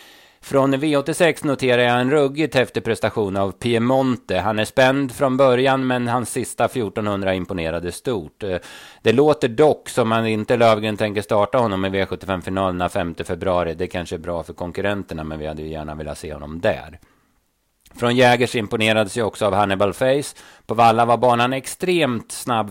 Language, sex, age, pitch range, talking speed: Swedish, male, 30-49, 95-125 Hz, 165 wpm